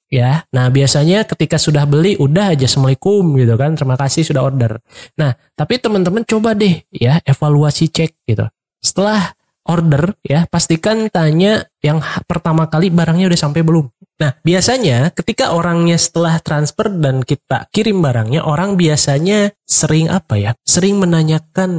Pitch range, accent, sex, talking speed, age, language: 135-175 Hz, native, male, 145 wpm, 20-39, Indonesian